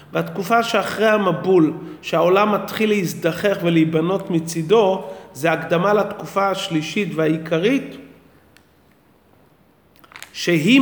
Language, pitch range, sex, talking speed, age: Hebrew, 165-210 Hz, male, 80 wpm, 40-59